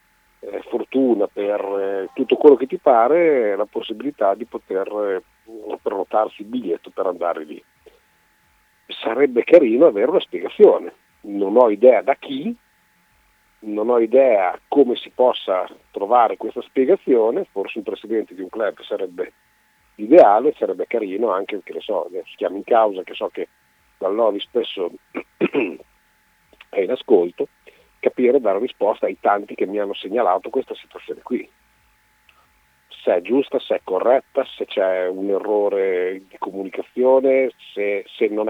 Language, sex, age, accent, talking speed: Italian, male, 50-69, native, 145 wpm